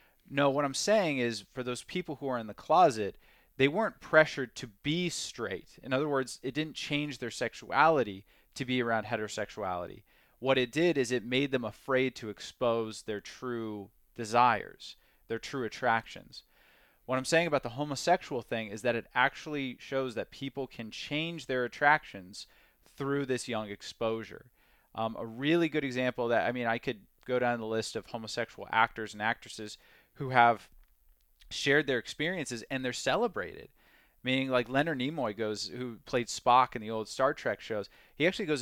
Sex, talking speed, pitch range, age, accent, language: male, 175 wpm, 115-135 Hz, 30-49, American, English